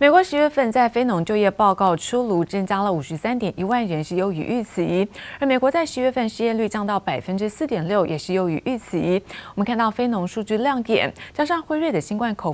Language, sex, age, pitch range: Chinese, female, 30-49, 180-235 Hz